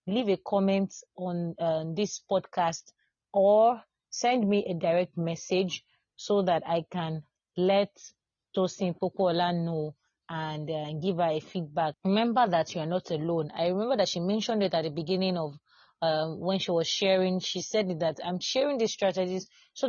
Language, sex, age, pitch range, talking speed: English, female, 30-49, 170-210 Hz, 170 wpm